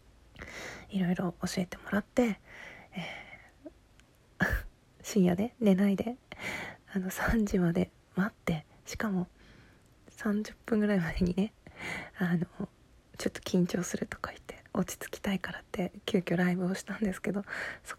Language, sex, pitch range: Japanese, female, 175-205 Hz